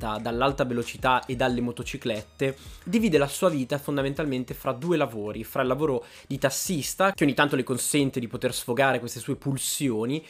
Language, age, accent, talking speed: Italian, 20-39, native, 170 wpm